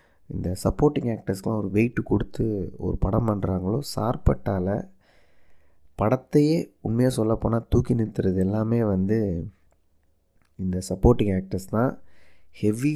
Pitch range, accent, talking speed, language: 95-115 Hz, native, 100 wpm, Tamil